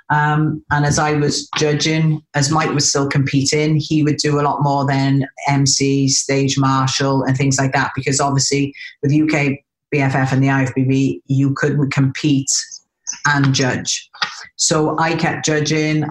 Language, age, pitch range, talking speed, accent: English, 40-59, 135-150 Hz, 155 wpm, British